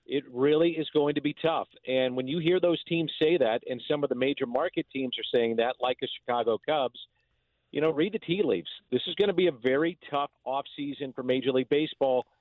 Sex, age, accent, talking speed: male, 50-69, American, 230 wpm